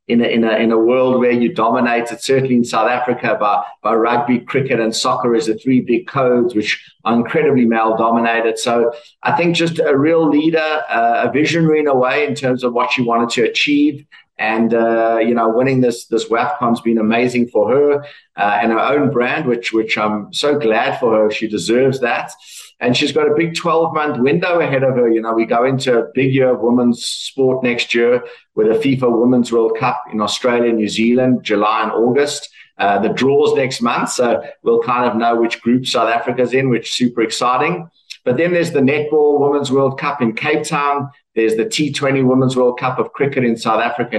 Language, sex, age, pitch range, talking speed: English, male, 50-69, 115-145 Hz, 215 wpm